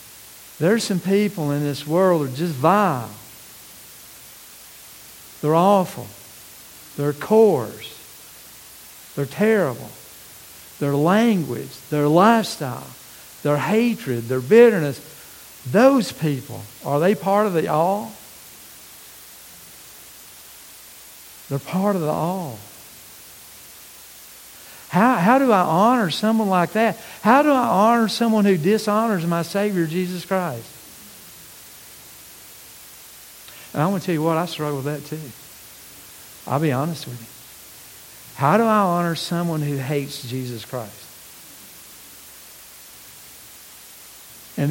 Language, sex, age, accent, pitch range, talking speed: English, male, 60-79, American, 130-195 Hz, 110 wpm